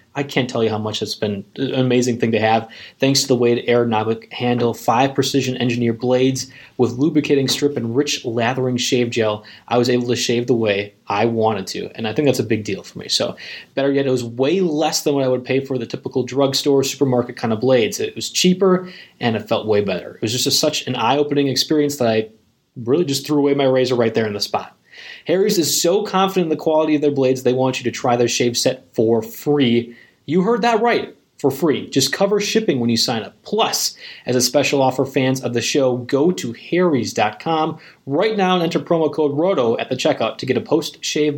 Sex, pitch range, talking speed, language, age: male, 120-155 Hz, 235 wpm, English, 20-39